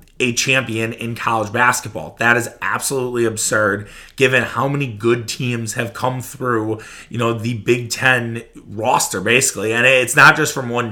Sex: male